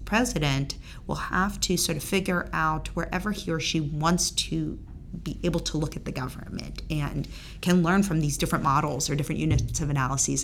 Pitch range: 140-170 Hz